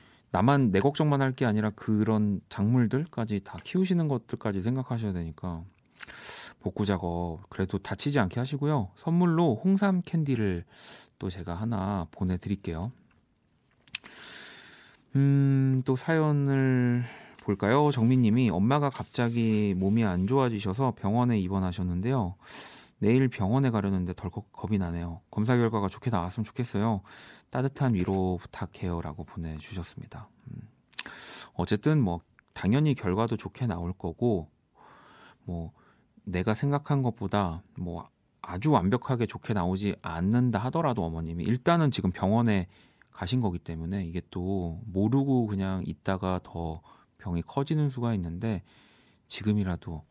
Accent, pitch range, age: native, 90-125 Hz, 30-49